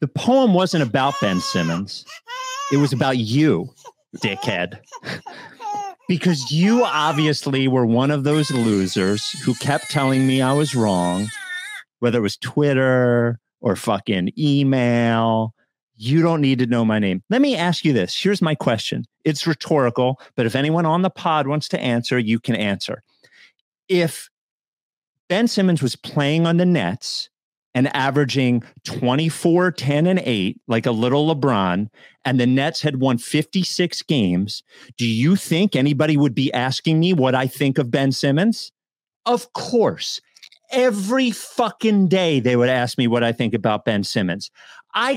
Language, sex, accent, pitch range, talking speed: English, male, American, 130-195 Hz, 155 wpm